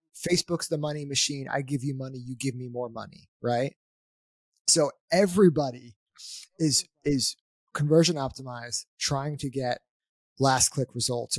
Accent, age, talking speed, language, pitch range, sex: American, 20-39, 135 wpm, English, 125-160 Hz, male